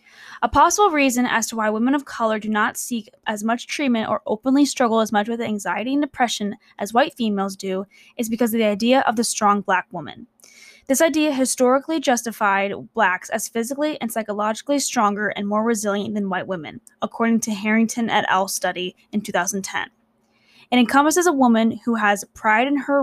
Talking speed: 185 wpm